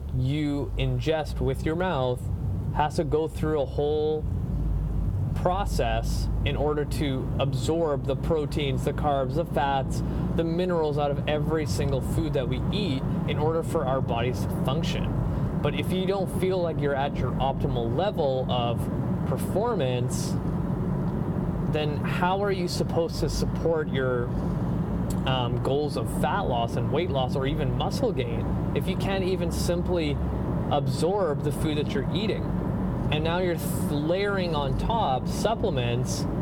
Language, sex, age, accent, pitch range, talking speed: English, male, 20-39, American, 135-165 Hz, 150 wpm